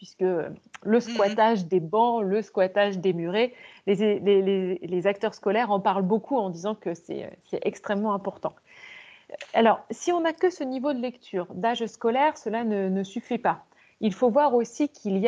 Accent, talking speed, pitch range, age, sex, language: French, 185 wpm, 195-250 Hz, 30-49, female, French